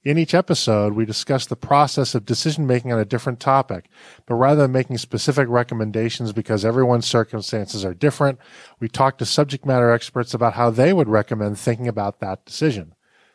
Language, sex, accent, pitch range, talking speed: English, male, American, 110-130 Hz, 175 wpm